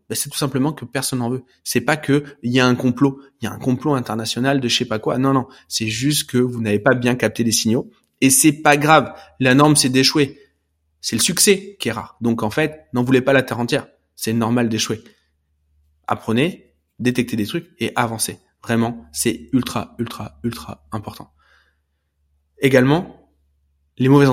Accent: French